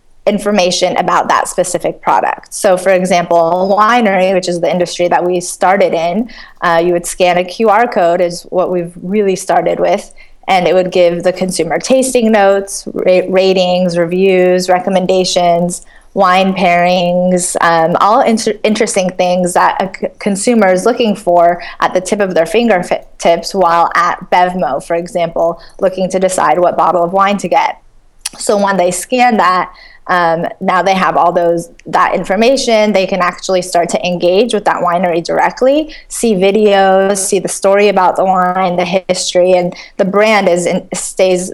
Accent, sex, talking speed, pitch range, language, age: American, female, 160 wpm, 175-200 Hz, English, 20-39